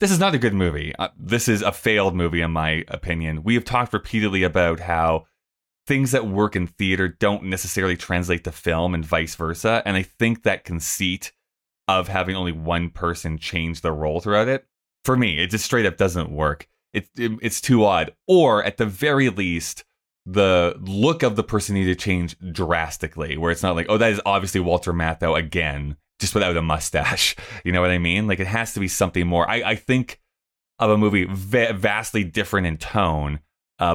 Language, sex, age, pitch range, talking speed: English, male, 20-39, 85-105 Hz, 205 wpm